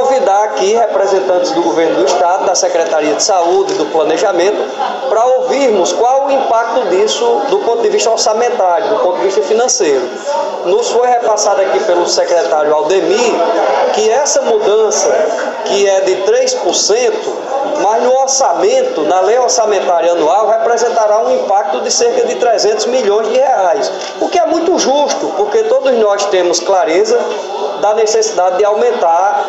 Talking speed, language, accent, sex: 150 wpm, Portuguese, Brazilian, male